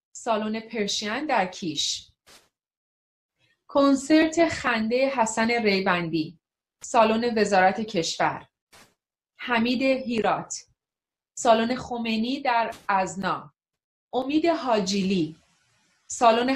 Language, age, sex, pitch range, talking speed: Persian, 30-49, female, 190-245 Hz, 75 wpm